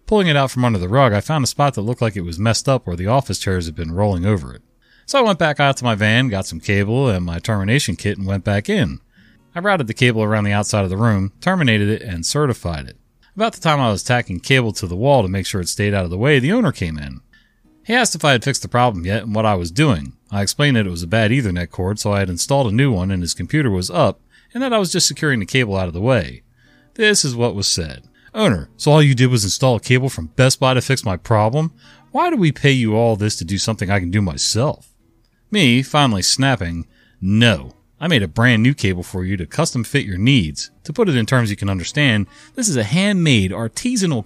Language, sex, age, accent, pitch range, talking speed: English, male, 30-49, American, 95-140 Hz, 265 wpm